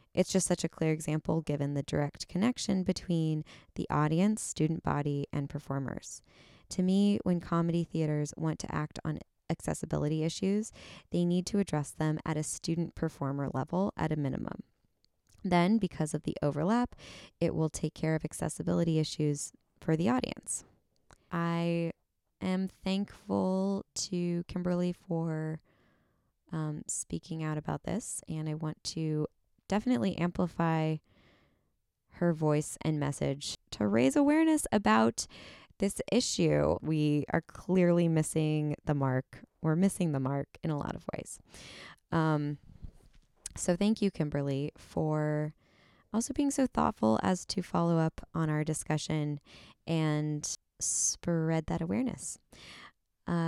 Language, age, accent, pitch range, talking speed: English, 20-39, American, 150-190 Hz, 135 wpm